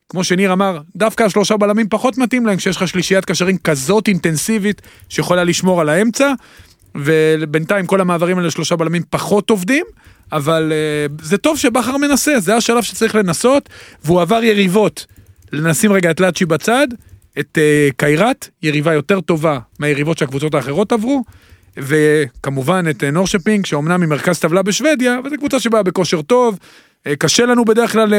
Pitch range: 170-225 Hz